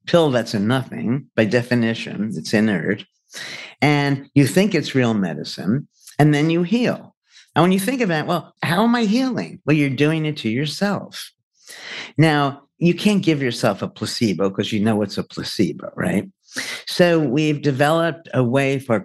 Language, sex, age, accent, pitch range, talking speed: English, male, 50-69, American, 115-155 Hz, 170 wpm